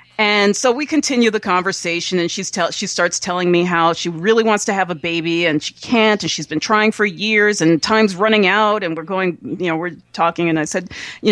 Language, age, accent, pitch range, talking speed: English, 30-49, American, 175-220 Hz, 240 wpm